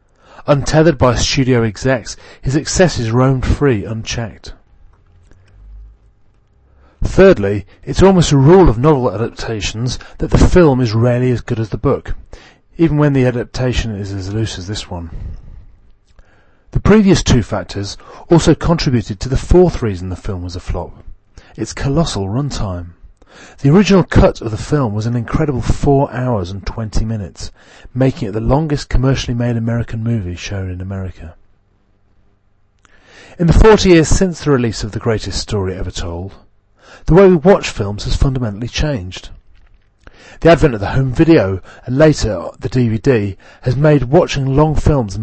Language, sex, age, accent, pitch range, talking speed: English, male, 30-49, British, 100-140 Hz, 155 wpm